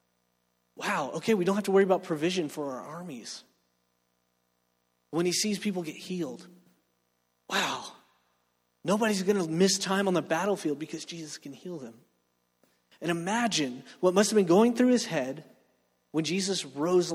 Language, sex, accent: English, male, American